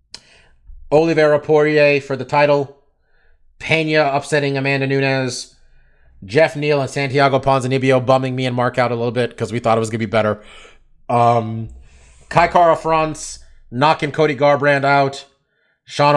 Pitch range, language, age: 110-145 Hz, English, 30-49